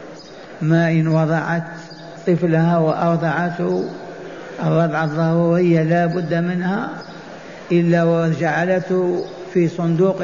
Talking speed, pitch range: 80 wpm, 165-185 Hz